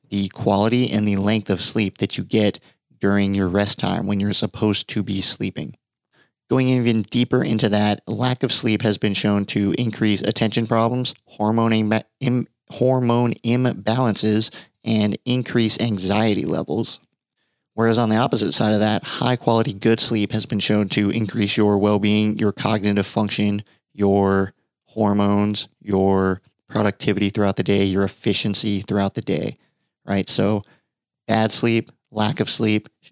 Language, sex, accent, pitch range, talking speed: English, male, American, 100-115 Hz, 150 wpm